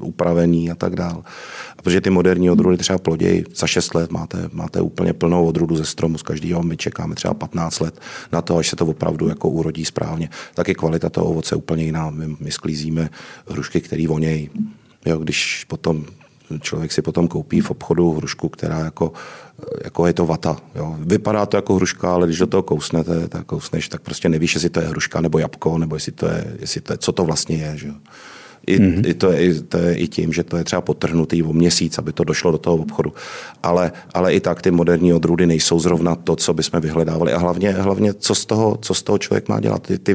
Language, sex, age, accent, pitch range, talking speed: Czech, male, 40-59, native, 80-90 Hz, 215 wpm